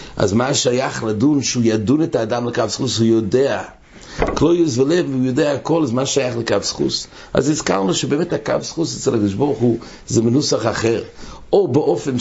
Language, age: English, 60-79